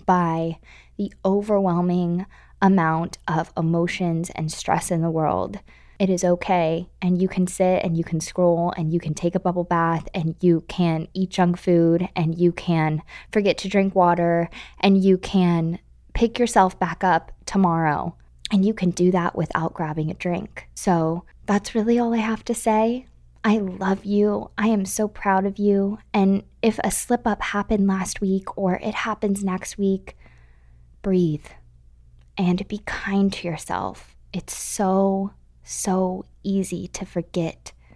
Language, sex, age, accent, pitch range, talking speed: English, female, 20-39, American, 165-195 Hz, 160 wpm